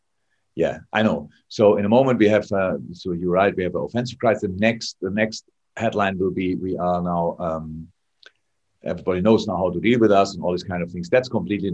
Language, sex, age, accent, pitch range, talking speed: English, male, 50-69, German, 90-110 Hz, 230 wpm